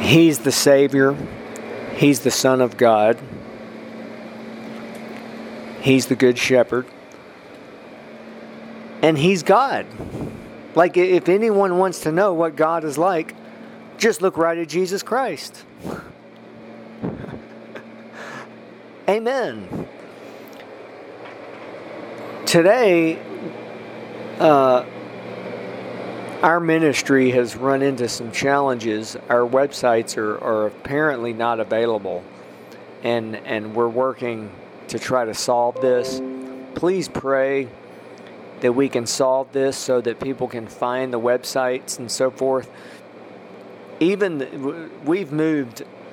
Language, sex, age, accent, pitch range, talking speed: English, male, 50-69, American, 120-155 Hz, 100 wpm